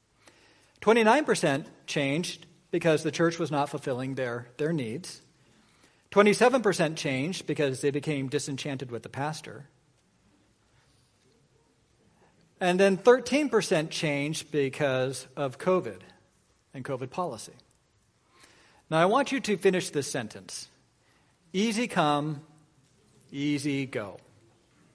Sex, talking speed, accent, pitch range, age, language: male, 100 wpm, American, 135-170 Hz, 40-59, English